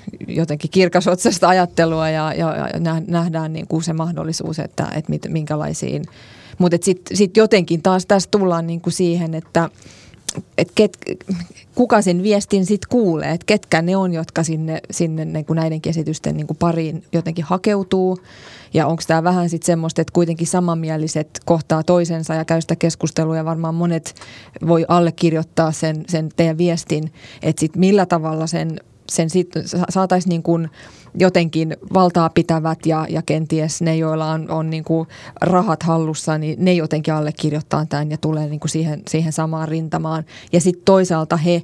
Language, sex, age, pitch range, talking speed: Finnish, female, 30-49, 160-175 Hz, 165 wpm